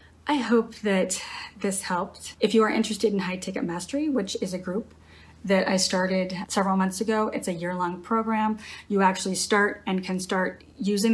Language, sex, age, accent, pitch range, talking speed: English, female, 30-49, American, 190-225 Hz, 190 wpm